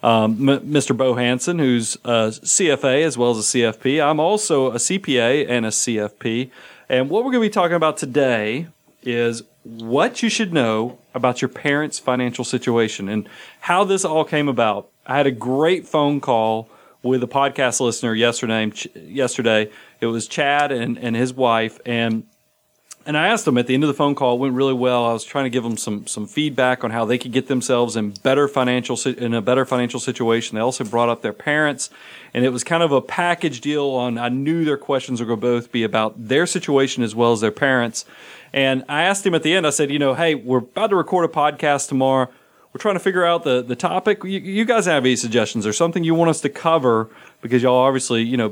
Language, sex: English, male